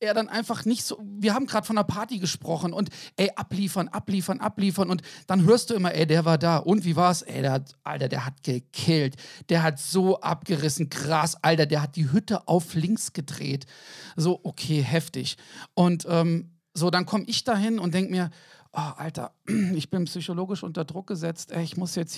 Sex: male